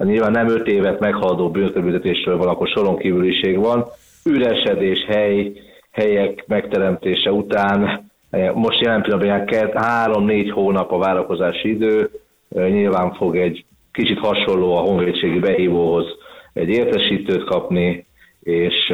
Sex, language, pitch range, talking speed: male, Hungarian, 95-115 Hz, 115 wpm